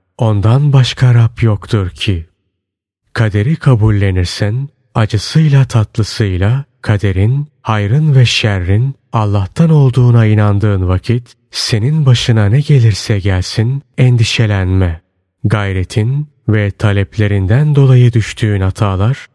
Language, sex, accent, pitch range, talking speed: Turkish, male, native, 100-125 Hz, 90 wpm